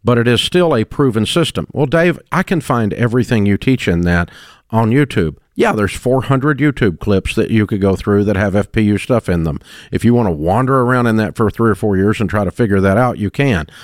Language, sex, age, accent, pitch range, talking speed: English, male, 50-69, American, 100-130 Hz, 245 wpm